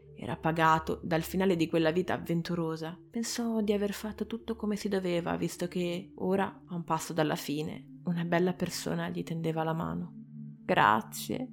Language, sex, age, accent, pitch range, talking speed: Italian, female, 20-39, native, 160-210 Hz, 165 wpm